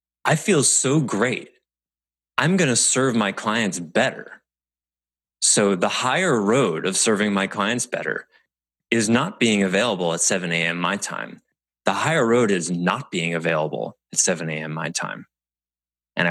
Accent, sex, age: American, male, 30-49